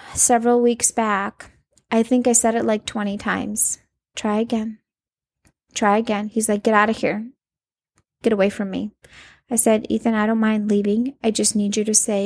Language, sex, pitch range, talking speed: English, female, 220-290 Hz, 185 wpm